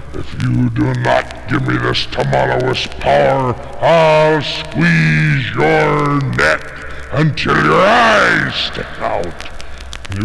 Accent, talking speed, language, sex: American, 110 wpm, English, female